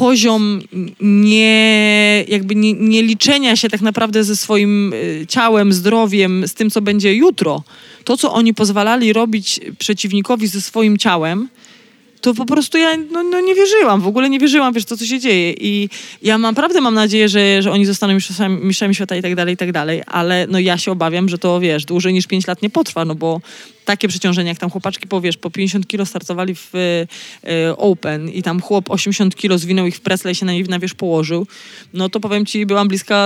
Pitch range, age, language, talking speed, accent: 180-215 Hz, 20-39, Polish, 200 wpm, native